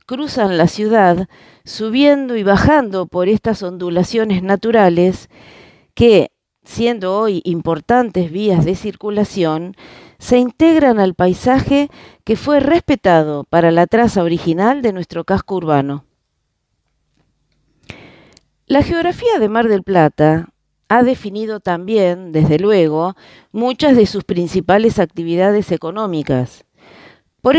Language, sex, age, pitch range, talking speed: Italian, female, 40-59, 170-230 Hz, 110 wpm